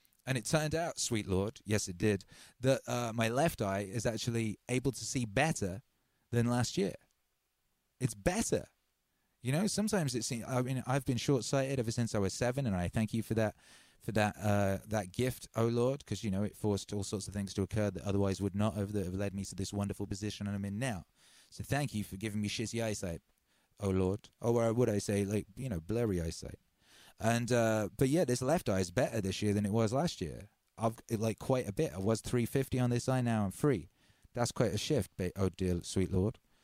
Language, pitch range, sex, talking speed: English, 100-125 Hz, male, 225 wpm